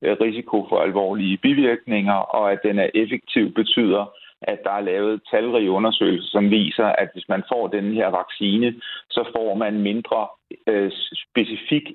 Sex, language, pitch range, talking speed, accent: male, Danish, 100-115 Hz, 155 wpm, native